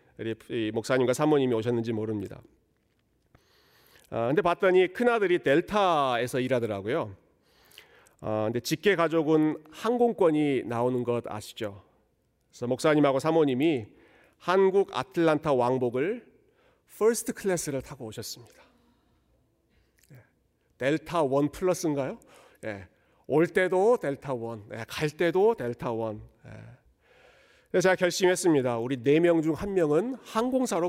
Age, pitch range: 40-59, 120-185 Hz